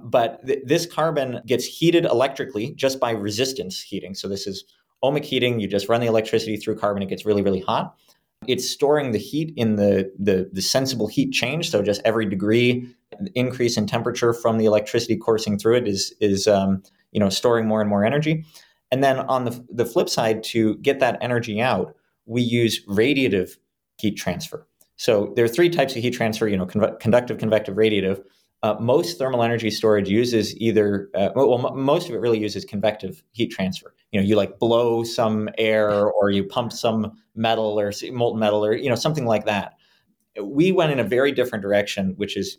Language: English